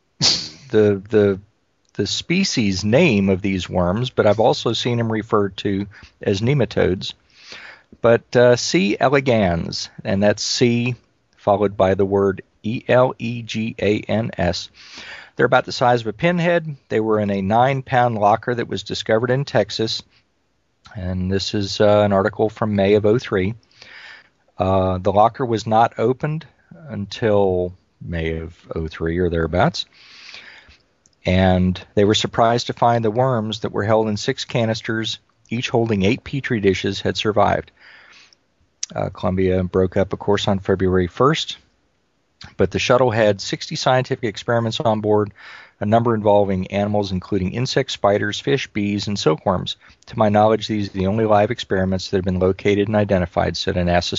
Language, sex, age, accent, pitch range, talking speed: English, male, 40-59, American, 95-115 Hz, 150 wpm